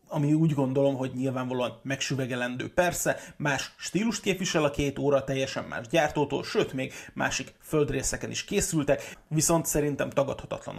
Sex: male